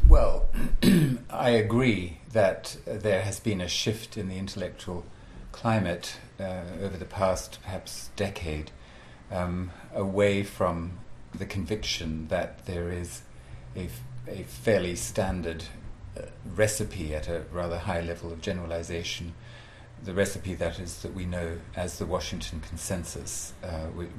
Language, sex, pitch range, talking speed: English, male, 80-100 Hz, 130 wpm